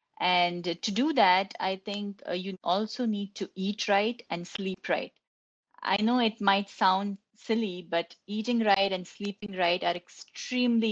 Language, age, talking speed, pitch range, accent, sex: English, 30-49, 165 wpm, 185-225 Hz, Indian, female